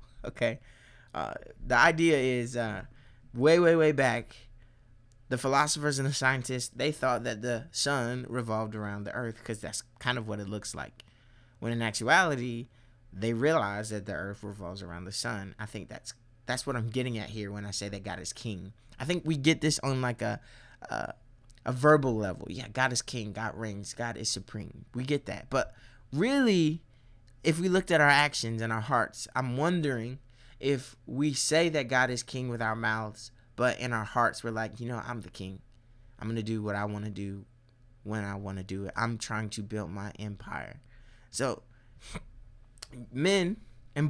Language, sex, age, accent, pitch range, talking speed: English, male, 20-39, American, 110-130 Hz, 190 wpm